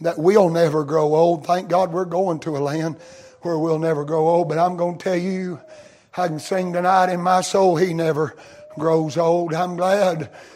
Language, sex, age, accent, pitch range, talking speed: English, male, 60-79, American, 155-195 Hz, 205 wpm